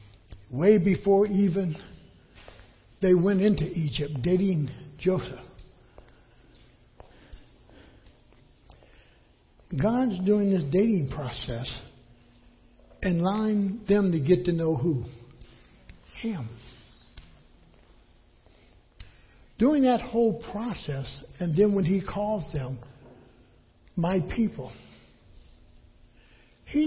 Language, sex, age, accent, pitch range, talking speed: English, male, 60-79, American, 130-215 Hz, 80 wpm